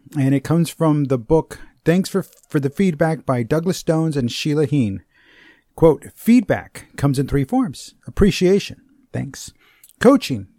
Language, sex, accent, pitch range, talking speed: English, male, American, 130-170 Hz, 145 wpm